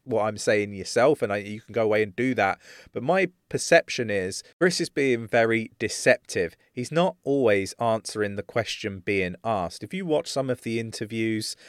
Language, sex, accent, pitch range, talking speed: English, male, British, 100-130 Hz, 190 wpm